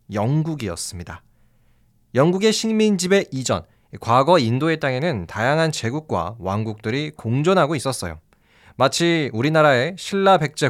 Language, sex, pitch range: Korean, male, 110-175 Hz